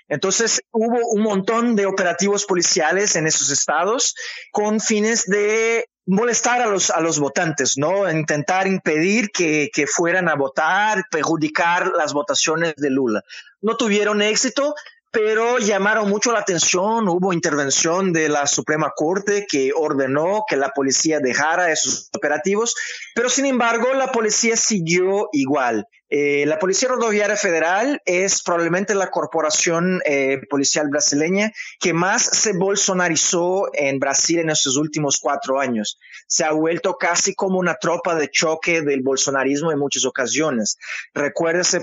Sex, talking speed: male, 140 wpm